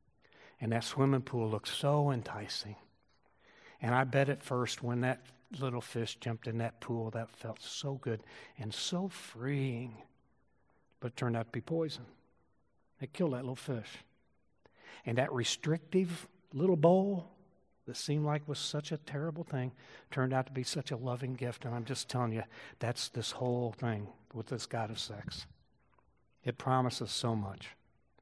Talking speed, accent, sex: 170 wpm, American, male